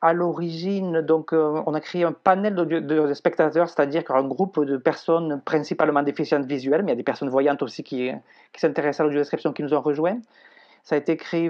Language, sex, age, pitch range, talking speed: French, male, 40-59, 150-170 Hz, 200 wpm